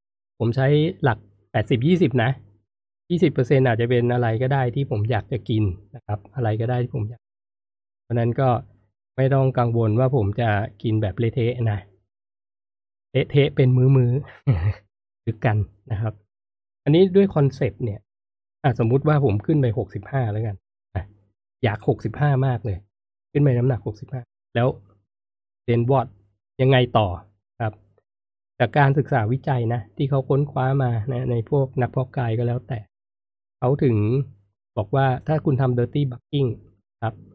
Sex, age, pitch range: male, 20-39, 100-130 Hz